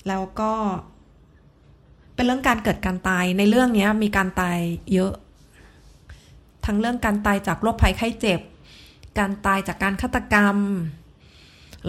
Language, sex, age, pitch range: Thai, female, 30-49, 170-210 Hz